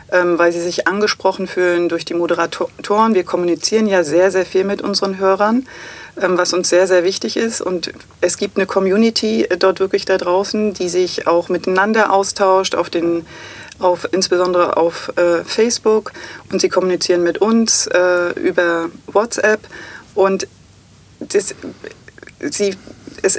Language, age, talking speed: German, 40-59, 145 wpm